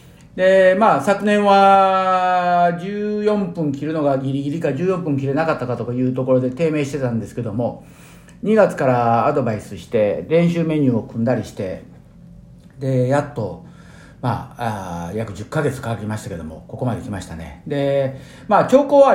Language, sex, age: Japanese, male, 50-69